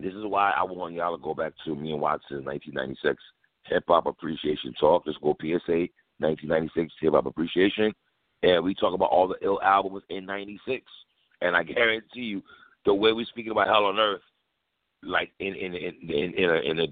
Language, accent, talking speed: English, American, 200 wpm